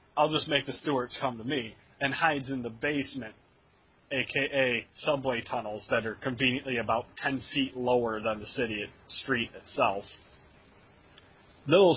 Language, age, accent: English, 30-49, American